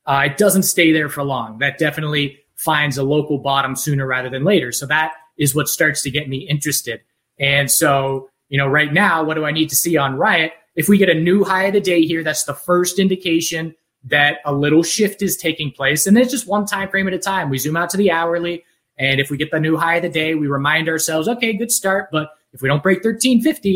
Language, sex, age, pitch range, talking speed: English, male, 20-39, 145-195 Hz, 245 wpm